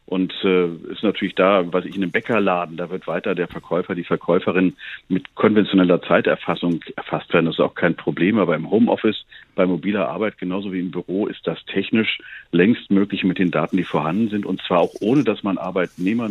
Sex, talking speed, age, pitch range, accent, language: male, 205 wpm, 50-69, 90-100 Hz, German, German